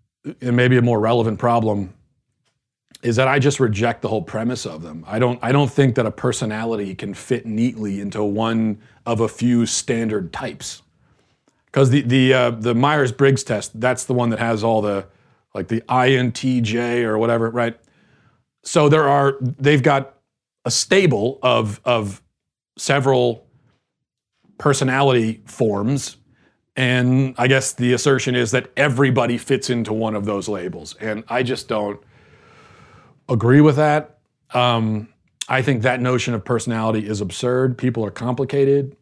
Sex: male